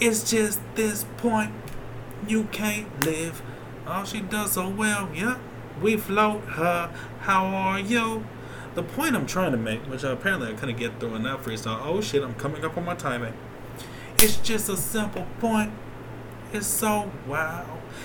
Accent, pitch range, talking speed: American, 135-220 Hz, 175 wpm